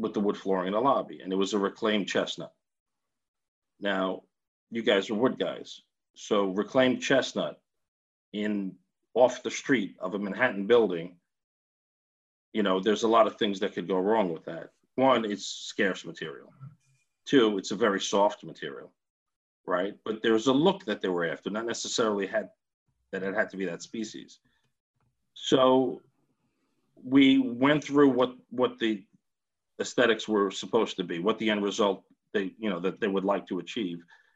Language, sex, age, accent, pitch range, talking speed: English, male, 40-59, American, 100-130 Hz, 170 wpm